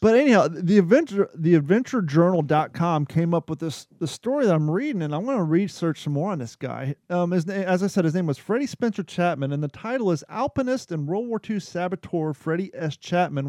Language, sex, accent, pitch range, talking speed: English, male, American, 145-185 Hz, 220 wpm